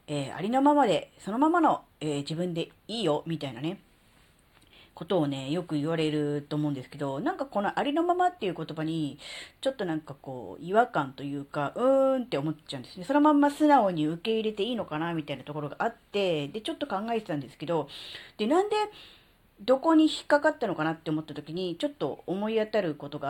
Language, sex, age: Japanese, female, 40-59